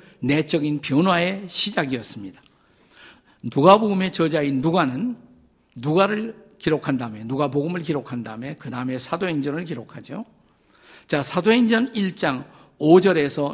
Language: Korean